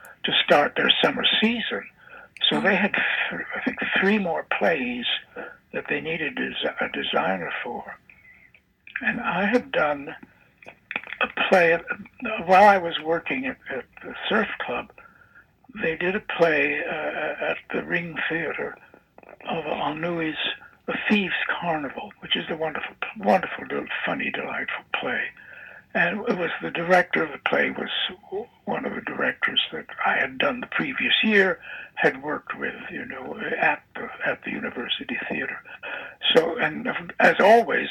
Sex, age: male, 60-79